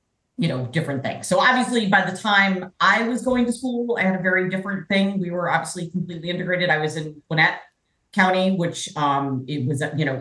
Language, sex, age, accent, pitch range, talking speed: English, female, 40-59, American, 125-170 Hz, 210 wpm